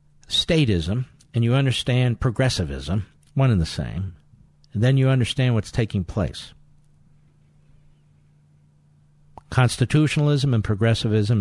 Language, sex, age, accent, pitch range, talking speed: English, male, 50-69, American, 95-145 Hz, 100 wpm